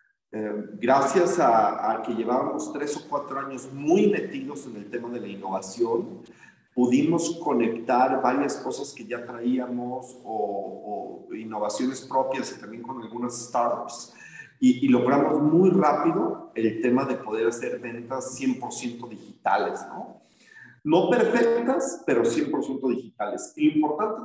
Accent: Mexican